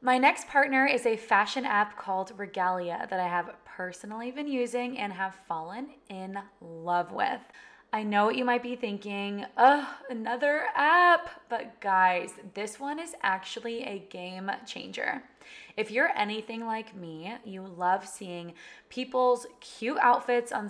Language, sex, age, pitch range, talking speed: English, female, 20-39, 190-250 Hz, 150 wpm